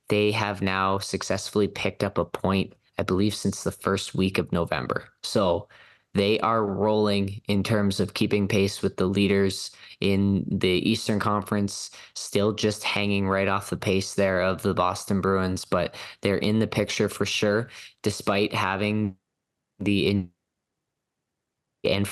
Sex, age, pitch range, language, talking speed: male, 20-39, 95-110 Hz, English, 150 wpm